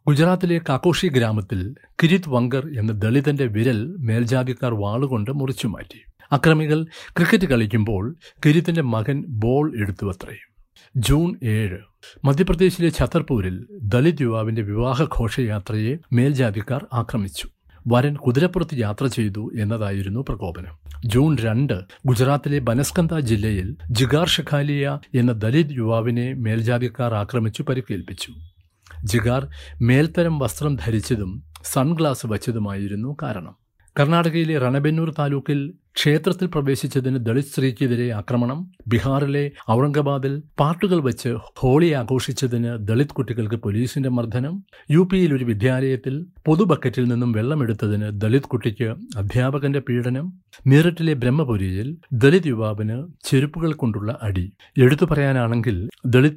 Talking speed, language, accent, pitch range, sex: 100 wpm, Malayalam, native, 110-145 Hz, male